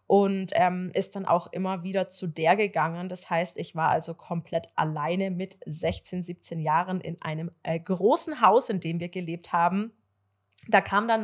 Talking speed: 180 wpm